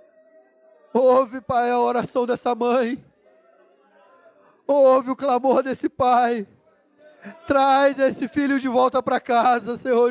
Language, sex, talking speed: Portuguese, male, 115 wpm